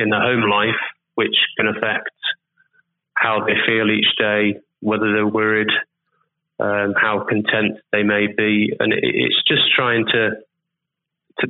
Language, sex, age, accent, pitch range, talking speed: English, male, 30-49, British, 105-160 Hz, 140 wpm